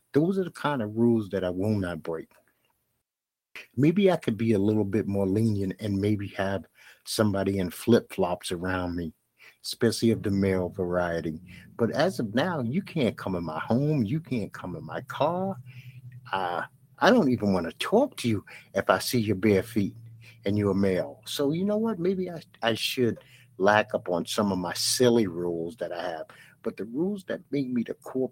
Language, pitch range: English, 100-125 Hz